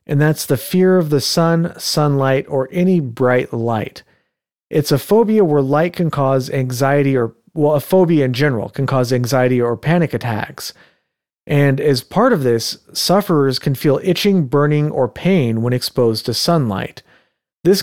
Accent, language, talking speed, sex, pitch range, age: American, English, 165 wpm, male, 125-155 Hz, 40-59